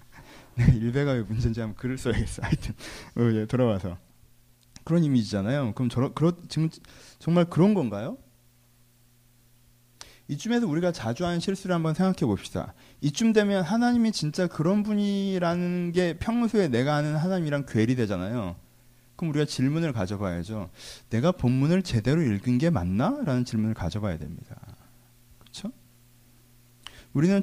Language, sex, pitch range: Korean, male, 120-180 Hz